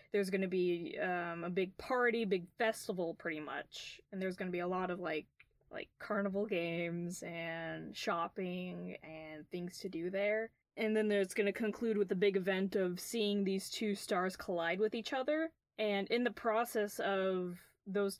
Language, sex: English, female